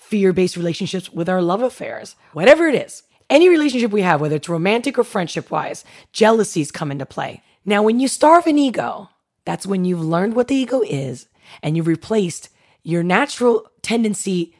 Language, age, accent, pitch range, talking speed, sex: English, 30-49, American, 140-215 Hz, 175 wpm, female